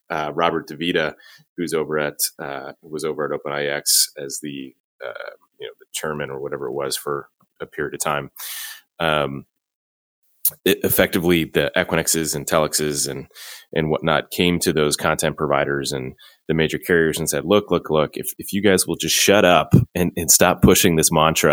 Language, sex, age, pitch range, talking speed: English, male, 30-49, 70-80 Hz, 180 wpm